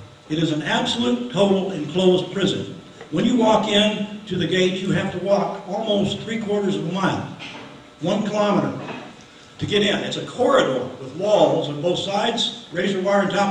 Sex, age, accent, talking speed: male, 60-79, American, 180 wpm